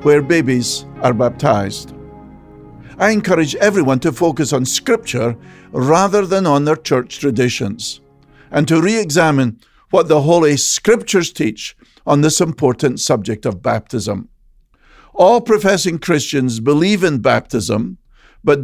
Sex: male